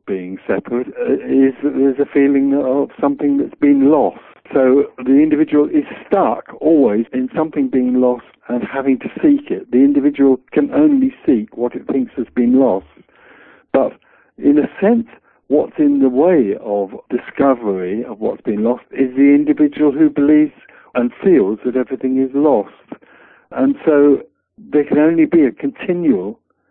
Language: English